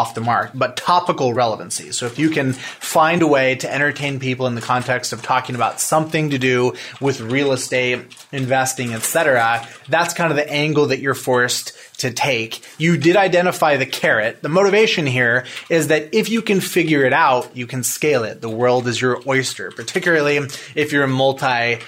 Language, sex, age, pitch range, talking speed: English, male, 30-49, 125-150 Hz, 190 wpm